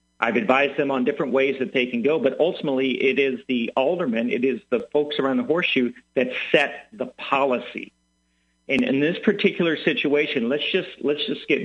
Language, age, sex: English, 50-69, male